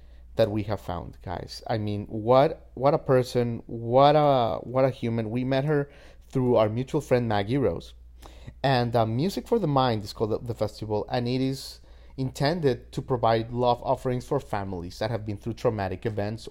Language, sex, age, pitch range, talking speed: English, male, 30-49, 105-135 Hz, 190 wpm